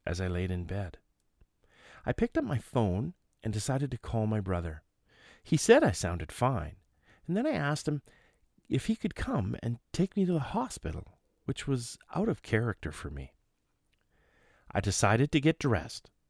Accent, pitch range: American, 95-145 Hz